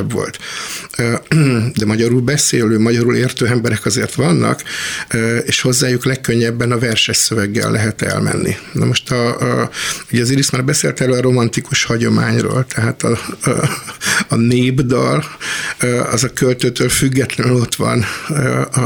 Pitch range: 120-130 Hz